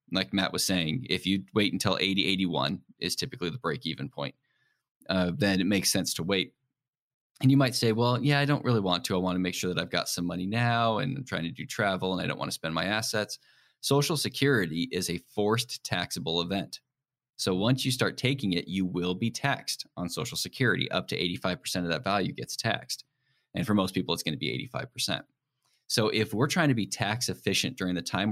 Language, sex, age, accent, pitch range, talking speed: English, male, 20-39, American, 95-130 Hz, 225 wpm